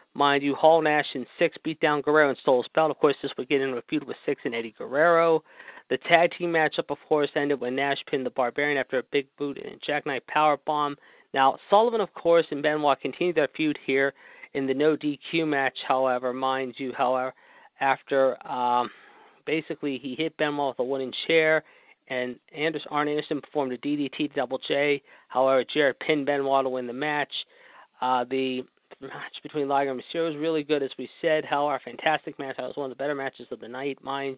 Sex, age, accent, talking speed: male, 40-59, American, 210 wpm